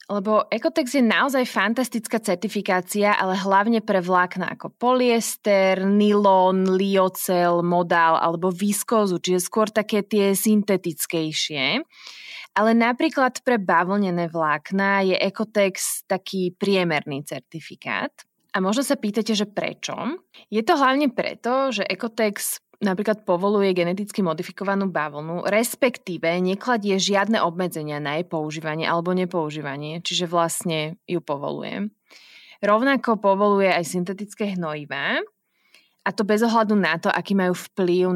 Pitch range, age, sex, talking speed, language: 175-215 Hz, 20-39, female, 120 wpm, Slovak